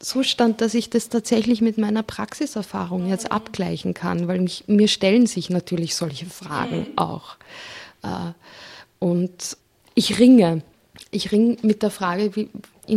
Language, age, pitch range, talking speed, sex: German, 20-39, 180-220 Hz, 140 wpm, female